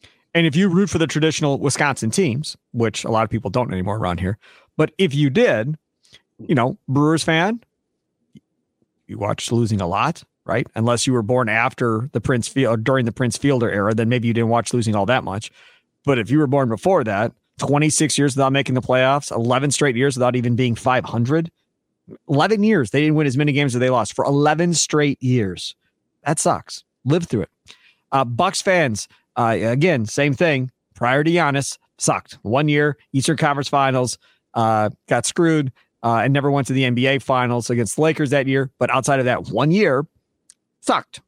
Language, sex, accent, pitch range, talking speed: English, male, American, 115-150 Hz, 195 wpm